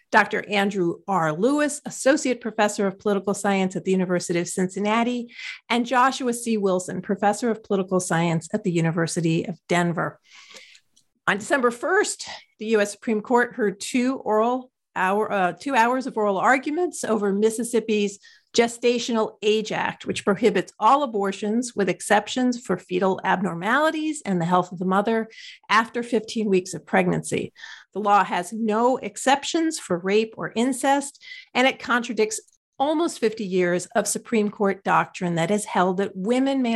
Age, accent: 50-69, American